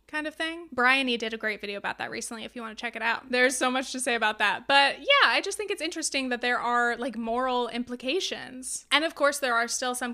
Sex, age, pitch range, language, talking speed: female, 20-39, 235-285 Hz, English, 260 wpm